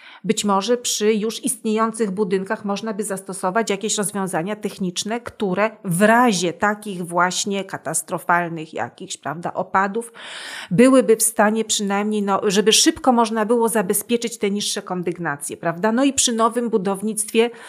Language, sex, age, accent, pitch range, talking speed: Polish, female, 40-59, native, 195-235 Hz, 135 wpm